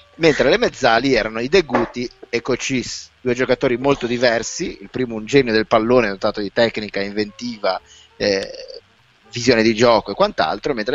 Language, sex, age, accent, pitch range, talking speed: Italian, male, 20-39, native, 105-135 Hz, 165 wpm